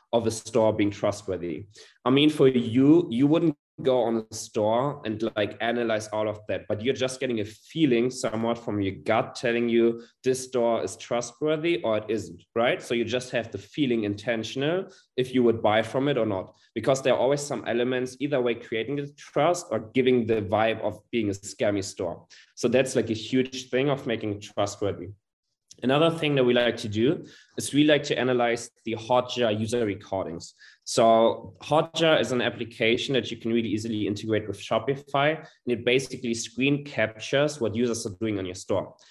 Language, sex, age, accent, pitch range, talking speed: English, male, 20-39, German, 110-130 Hz, 195 wpm